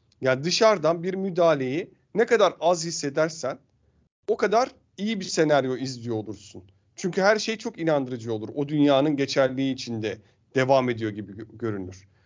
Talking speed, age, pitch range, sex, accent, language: 140 wpm, 40-59, 125-190 Hz, male, native, Turkish